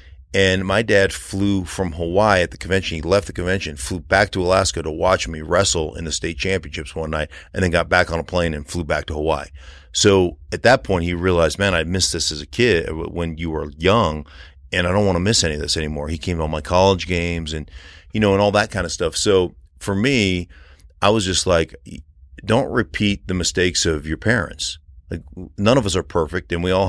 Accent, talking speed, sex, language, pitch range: American, 230 wpm, male, English, 80-95 Hz